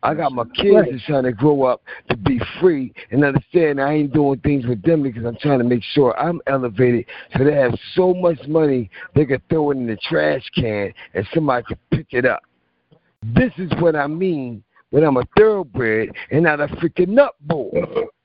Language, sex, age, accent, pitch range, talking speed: English, male, 50-69, American, 135-195 Hz, 205 wpm